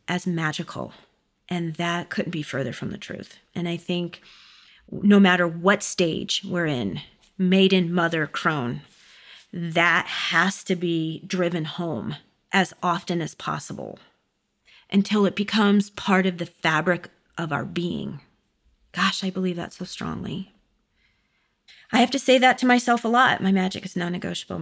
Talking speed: 150 wpm